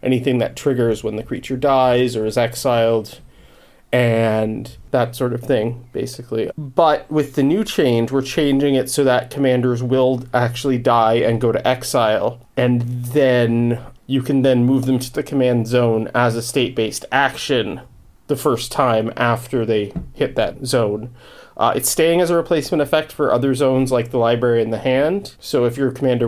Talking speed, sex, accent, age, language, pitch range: 175 wpm, male, American, 30-49, English, 120-140 Hz